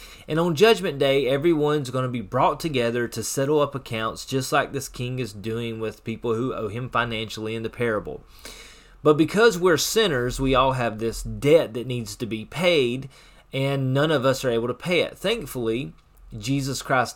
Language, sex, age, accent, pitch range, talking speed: English, male, 30-49, American, 115-145 Hz, 190 wpm